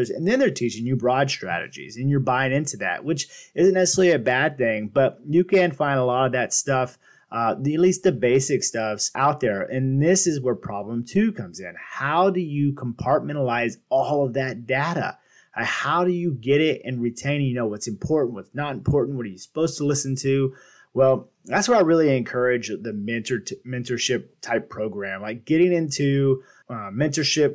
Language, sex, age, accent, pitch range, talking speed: English, male, 30-49, American, 125-155 Hz, 195 wpm